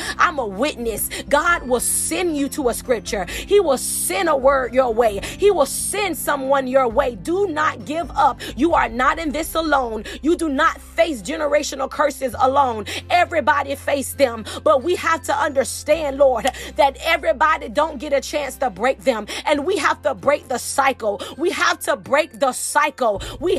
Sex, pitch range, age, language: female, 270-315 Hz, 30-49, English